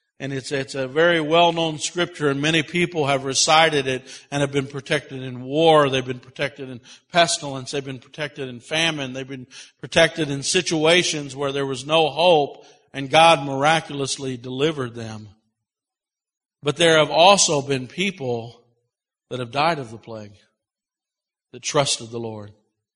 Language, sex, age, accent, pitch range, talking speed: English, male, 50-69, American, 140-185 Hz, 155 wpm